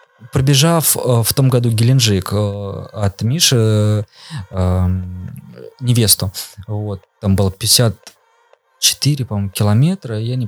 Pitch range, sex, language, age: 105-130 Hz, male, Russian, 20-39